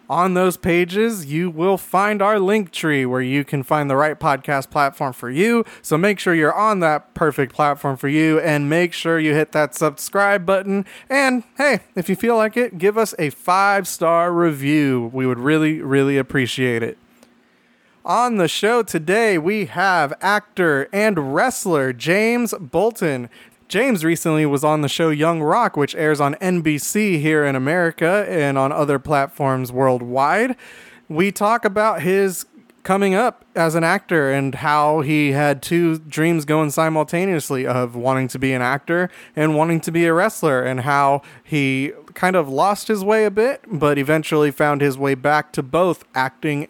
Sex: male